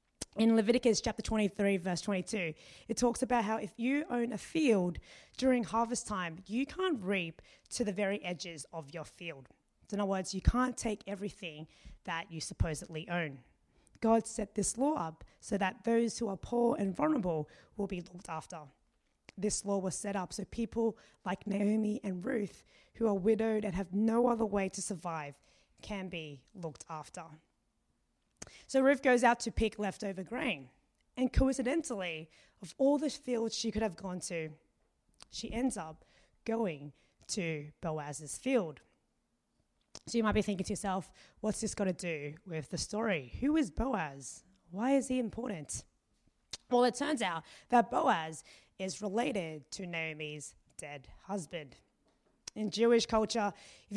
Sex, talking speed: female, 160 wpm